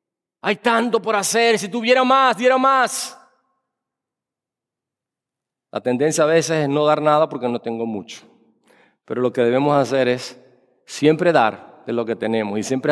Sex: male